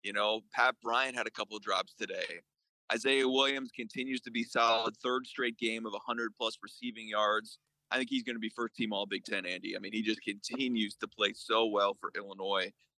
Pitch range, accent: 110-135 Hz, American